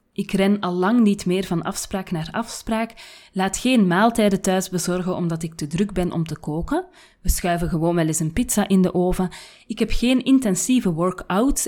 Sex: female